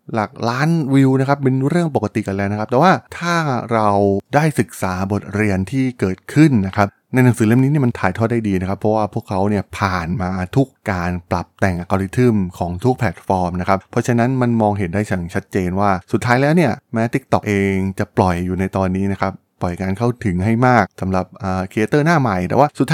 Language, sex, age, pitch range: Thai, male, 20-39, 95-125 Hz